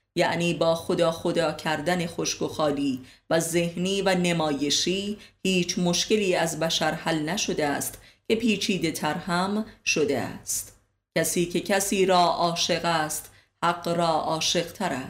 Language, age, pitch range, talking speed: Persian, 30-49, 150-185 Hz, 130 wpm